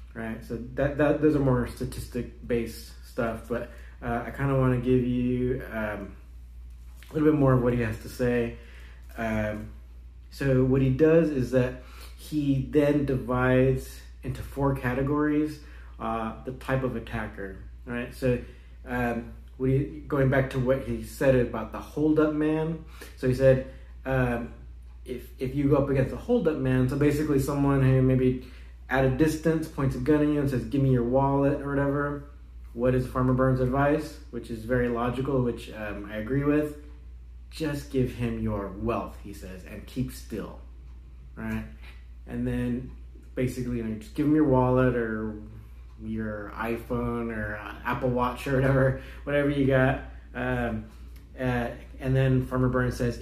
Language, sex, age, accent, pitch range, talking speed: English, male, 30-49, American, 105-135 Hz, 170 wpm